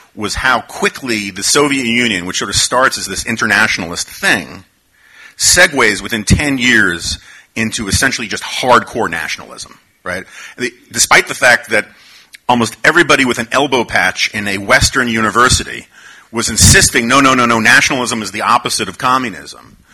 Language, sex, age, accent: English, male, 40-59, American